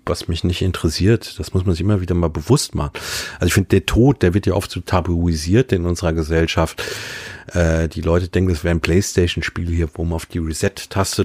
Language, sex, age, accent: German, male, 40-59, German